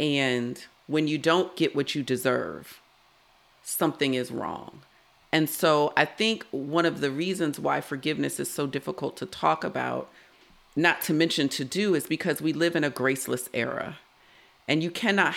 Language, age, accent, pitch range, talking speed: English, 40-59, American, 135-165 Hz, 170 wpm